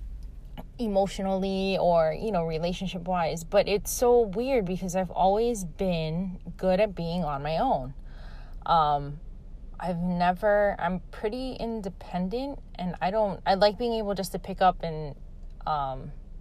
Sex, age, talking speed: female, 20-39, 140 wpm